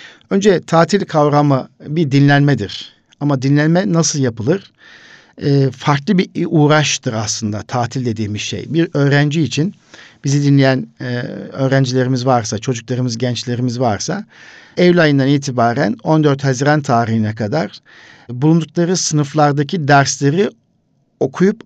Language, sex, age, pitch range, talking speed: Turkish, male, 50-69, 125-165 Hz, 110 wpm